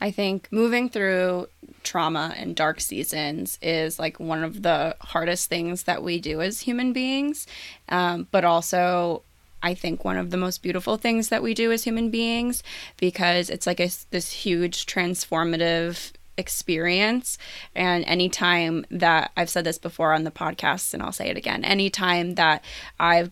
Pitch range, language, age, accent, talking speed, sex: 170-195 Hz, English, 20-39, American, 160 wpm, female